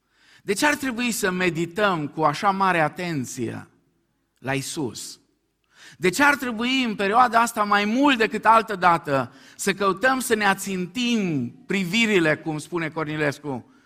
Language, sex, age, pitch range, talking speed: Romanian, male, 50-69, 145-200 Hz, 145 wpm